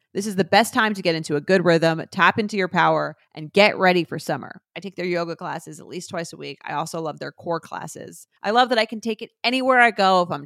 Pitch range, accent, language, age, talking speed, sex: 160-210 Hz, American, English, 30-49, 275 wpm, female